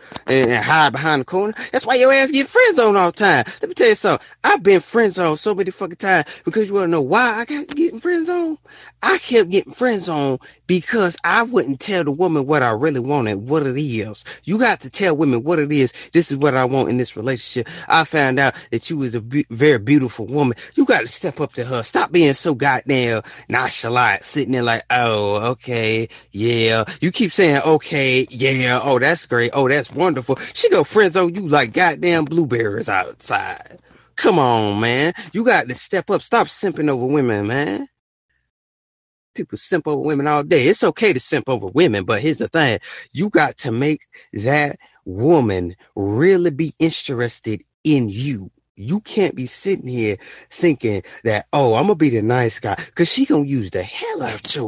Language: English